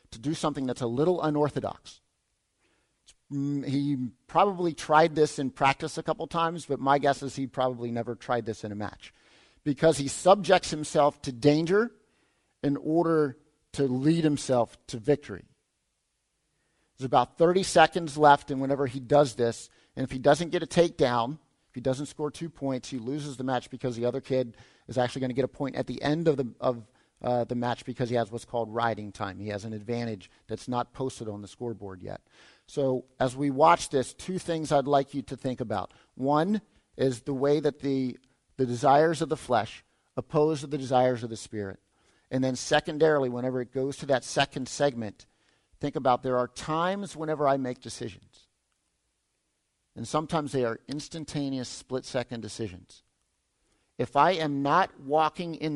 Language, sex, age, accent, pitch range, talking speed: English, male, 50-69, American, 125-150 Hz, 180 wpm